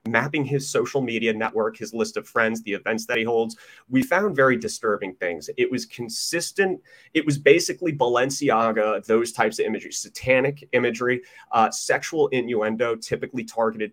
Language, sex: English, male